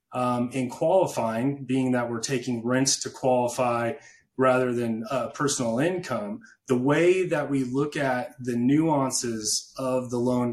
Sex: male